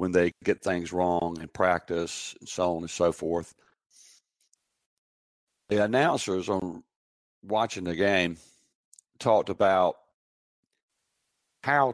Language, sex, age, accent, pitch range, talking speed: English, male, 60-79, American, 85-110 Hz, 110 wpm